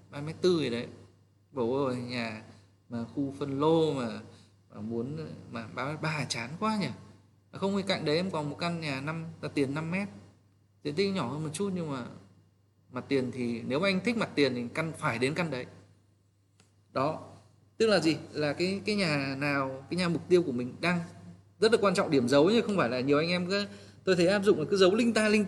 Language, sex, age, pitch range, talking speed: Vietnamese, male, 20-39, 105-165 Hz, 220 wpm